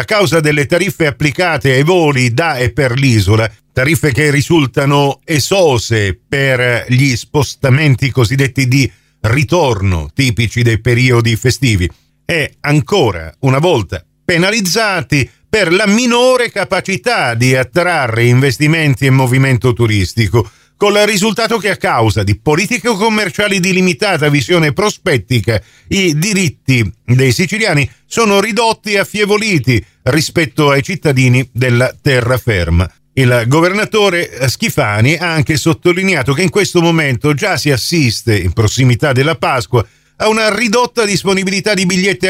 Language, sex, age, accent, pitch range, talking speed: Italian, male, 50-69, native, 125-180 Hz, 130 wpm